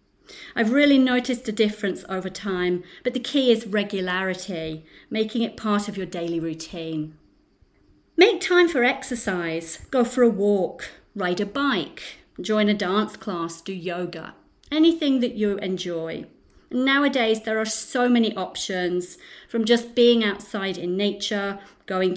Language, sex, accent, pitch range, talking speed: English, female, British, 190-260 Hz, 145 wpm